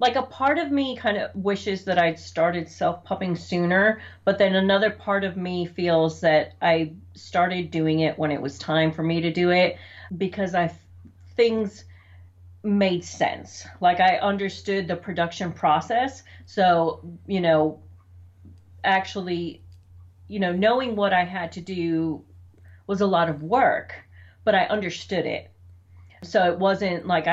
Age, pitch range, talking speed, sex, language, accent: 40-59, 140-185 Hz, 155 wpm, female, English, American